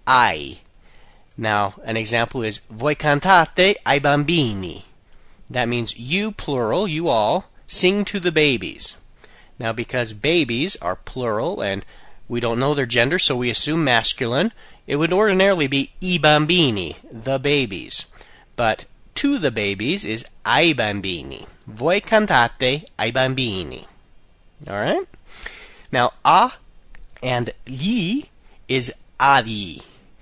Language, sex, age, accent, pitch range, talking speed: Italian, male, 30-49, American, 115-165 Hz, 120 wpm